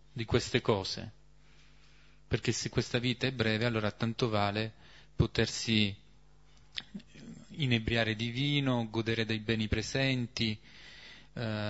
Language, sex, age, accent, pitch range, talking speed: Italian, male, 30-49, native, 110-135 Hz, 110 wpm